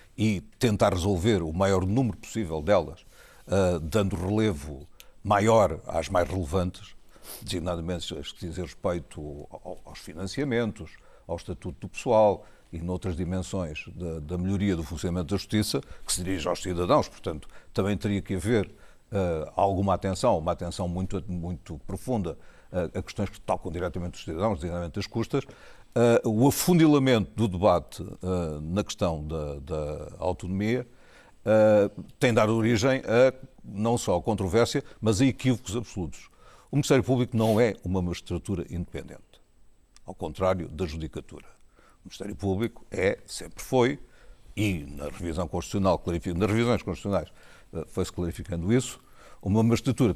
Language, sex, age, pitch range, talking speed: Portuguese, male, 60-79, 90-115 Hz, 140 wpm